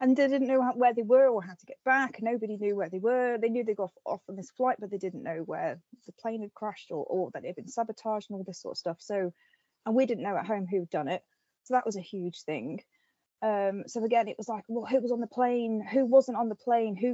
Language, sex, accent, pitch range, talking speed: English, female, British, 195-240 Hz, 285 wpm